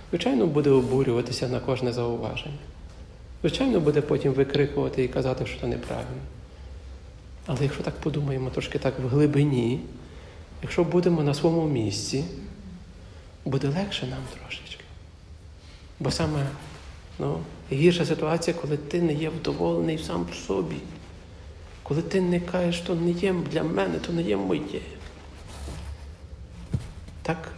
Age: 50-69